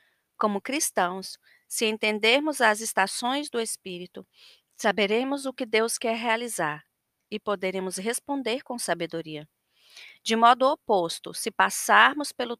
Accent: Brazilian